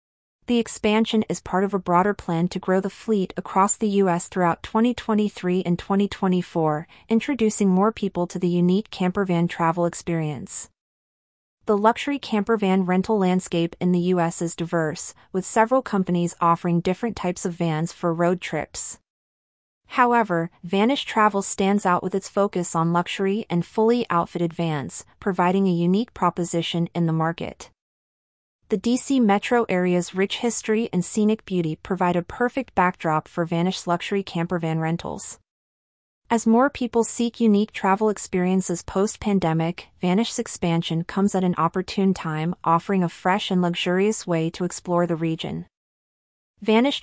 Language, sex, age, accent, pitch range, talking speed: English, female, 30-49, American, 170-210 Hz, 145 wpm